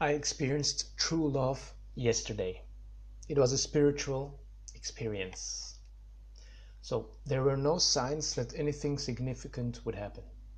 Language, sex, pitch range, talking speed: English, male, 110-140 Hz, 115 wpm